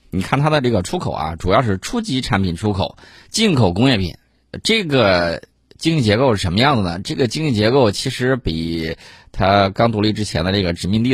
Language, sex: Chinese, male